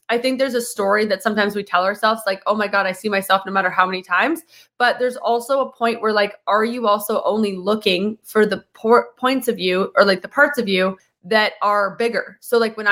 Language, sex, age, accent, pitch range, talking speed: English, female, 20-39, American, 190-230 Hz, 235 wpm